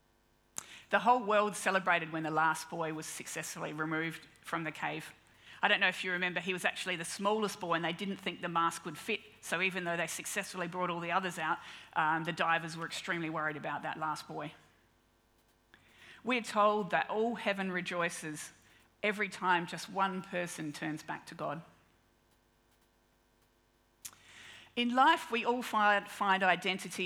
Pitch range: 155-195 Hz